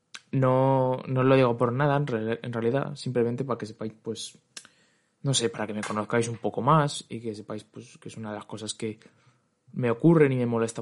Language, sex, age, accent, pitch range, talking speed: Spanish, male, 20-39, Spanish, 110-130 Hz, 215 wpm